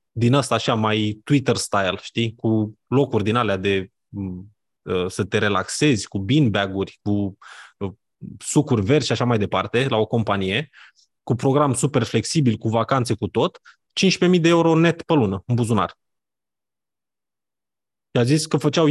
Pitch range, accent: 115-160 Hz, native